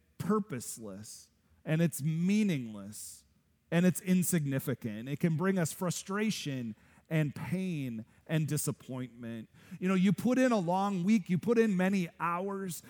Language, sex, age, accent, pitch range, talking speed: English, male, 40-59, American, 130-190 Hz, 135 wpm